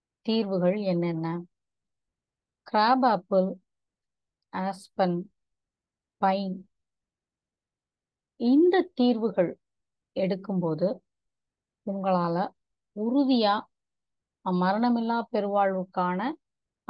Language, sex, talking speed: Tamil, female, 45 wpm